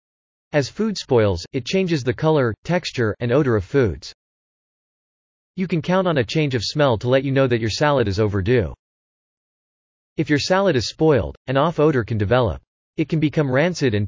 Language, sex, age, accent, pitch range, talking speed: English, male, 40-59, American, 110-155 Hz, 190 wpm